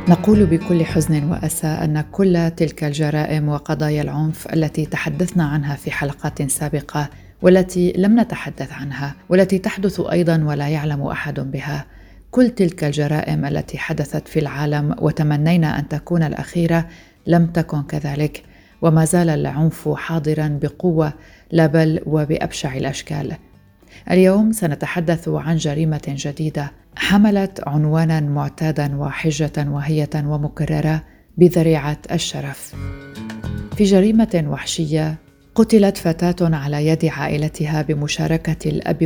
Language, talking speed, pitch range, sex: Arabic, 110 wpm, 150-170 Hz, female